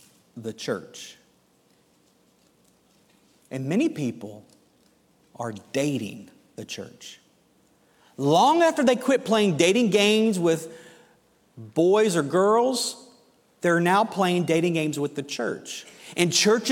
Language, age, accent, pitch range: English, 40-59, American, 180-235 Hz